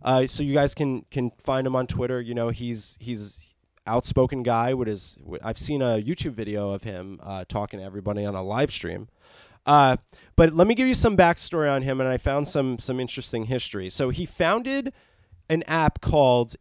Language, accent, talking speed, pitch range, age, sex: English, American, 200 wpm, 120-175 Hz, 20-39, male